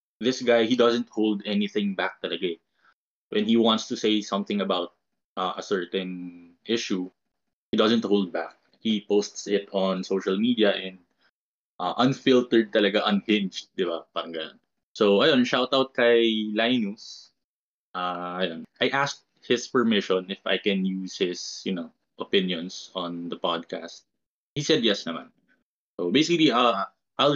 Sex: male